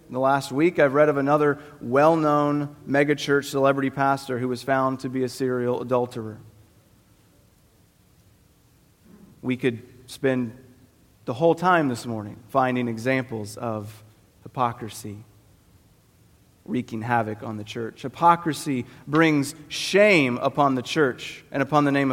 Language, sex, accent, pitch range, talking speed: English, male, American, 115-150 Hz, 125 wpm